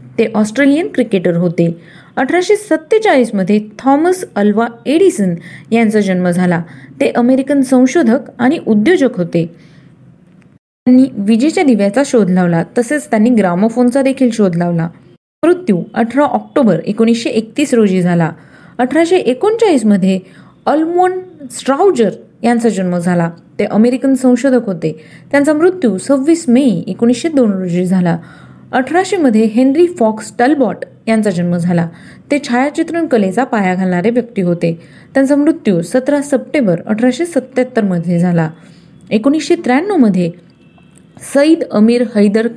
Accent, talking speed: native, 70 wpm